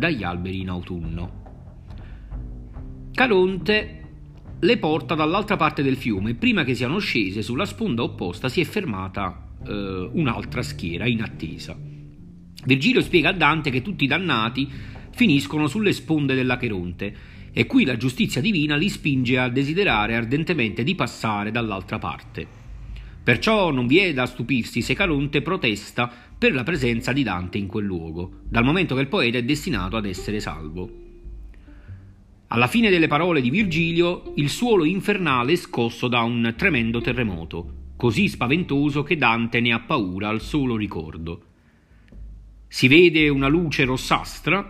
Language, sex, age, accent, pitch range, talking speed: Italian, male, 40-59, native, 95-150 Hz, 150 wpm